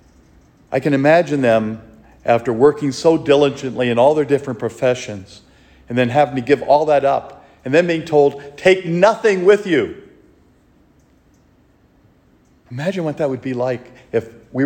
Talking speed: 150 wpm